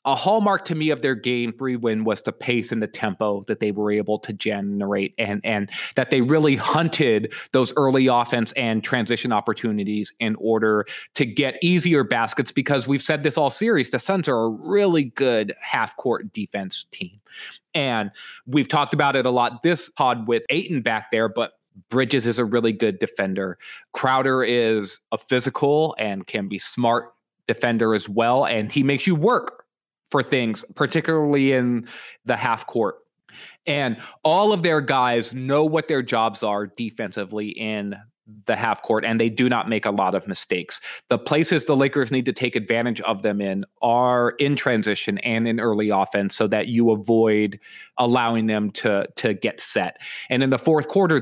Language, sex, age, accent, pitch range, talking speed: English, male, 20-39, American, 110-140 Hz, 180 wpm